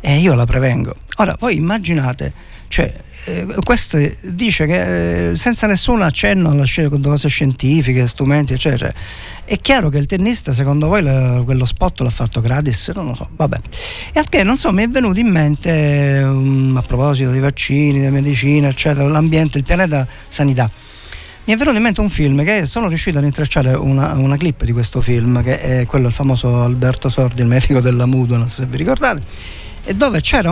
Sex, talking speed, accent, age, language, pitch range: male, 195 wpm, native, 50-69, Italian, 125-155 Hz